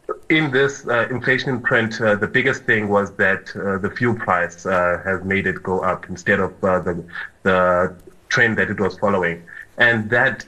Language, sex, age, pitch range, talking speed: English, male, 30-49, 95-110 Hz, 190 wpm